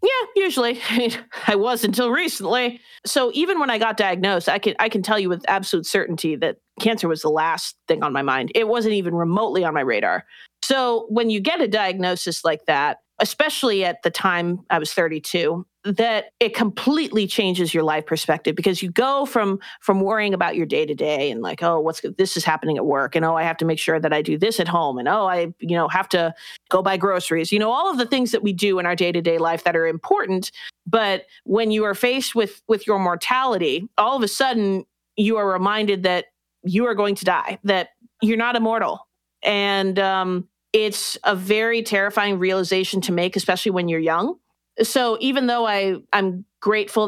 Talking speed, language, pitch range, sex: 210 wpm, English, 175-225 Hz, female